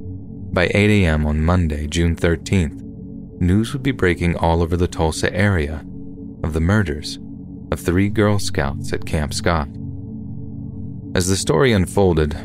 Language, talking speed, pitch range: English, 145 wpm, 80-100 Hz